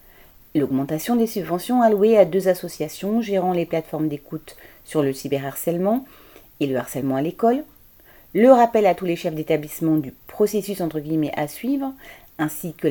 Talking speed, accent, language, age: 160 wpm, French, French, 40-59